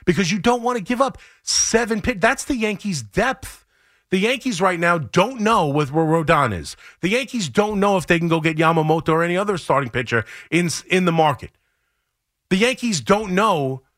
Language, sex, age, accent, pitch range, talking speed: English, male, 30-49, American, 150-215 Hz, 200 wpm